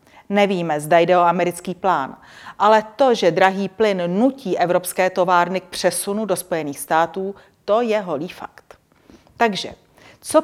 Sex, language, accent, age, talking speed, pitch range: female, Czech, native, 40-59, 145 wpm, 175-210 Hz